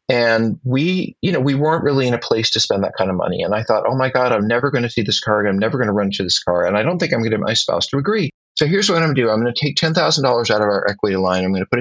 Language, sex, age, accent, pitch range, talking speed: English, male, 40-59, American, 110-140 Hz, 340 wpm